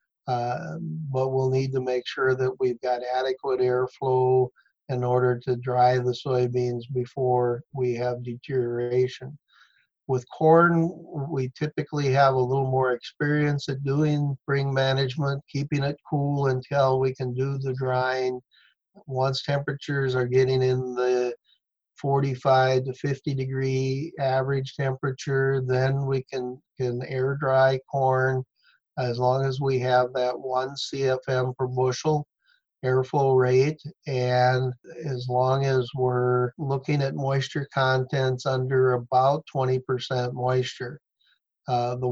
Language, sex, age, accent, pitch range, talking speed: English, male, 50-69, American, 125-140 Hz, 130 wpm